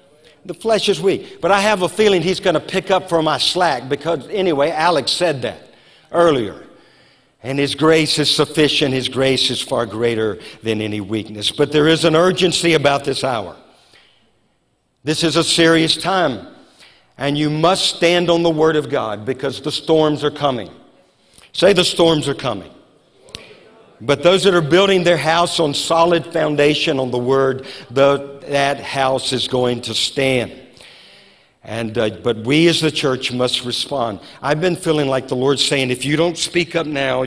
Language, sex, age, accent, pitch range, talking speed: English, male, 50-69, American, 130-165 Hz, 175 wpm